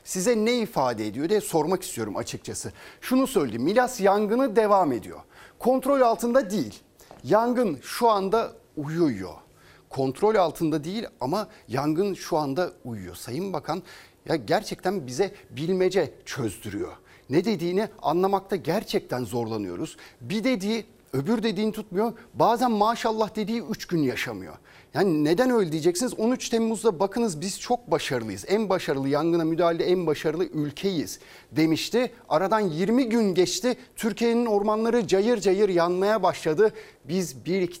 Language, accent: Turkish, native